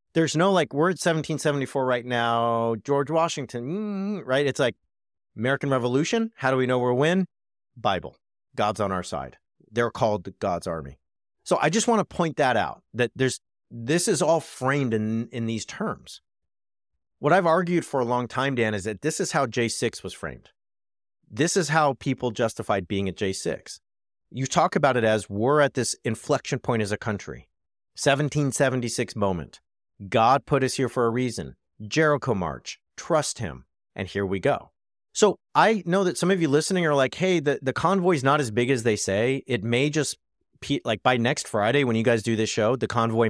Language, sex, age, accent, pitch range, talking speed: English, male, 40-59, American, 105-145 Hz, 195 wpm